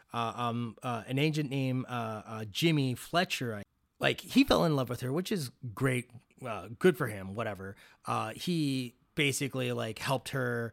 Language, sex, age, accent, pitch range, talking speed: English, male, 30-49, American, 115-150 Hz, 175 wpm